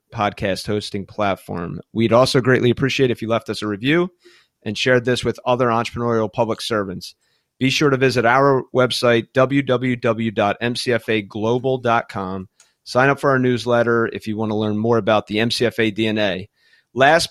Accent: American